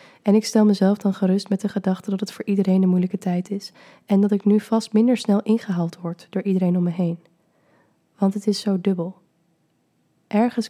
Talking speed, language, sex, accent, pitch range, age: 210 wpm, Dutch, female, Dutch, 180-200 Hz, 20-39